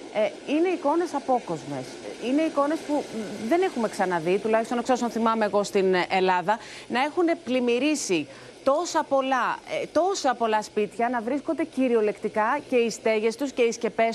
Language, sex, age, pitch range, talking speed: Greek, female, 30-49, 225-300 Hz, 140 wpm